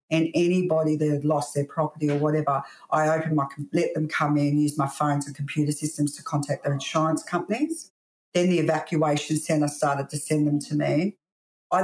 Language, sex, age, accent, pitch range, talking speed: English, female, 50-69, Australian, 145-165 Hz, 195 wpm